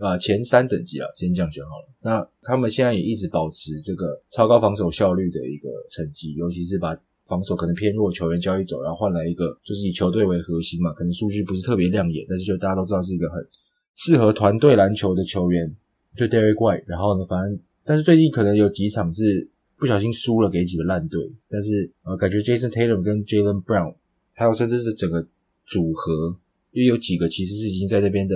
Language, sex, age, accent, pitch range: English, male, 20-39, Chinese, 85-105 Hz